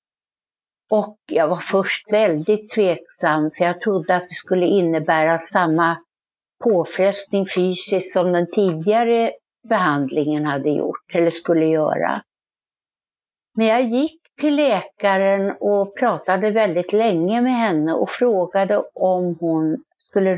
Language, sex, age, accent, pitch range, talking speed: Swedish, female, 60-79, native, 170-220 Hz, 120 wpm